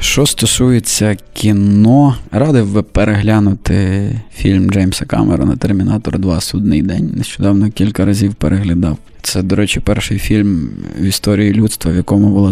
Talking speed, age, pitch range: 140 wpm, 20-39, 95-110 Hz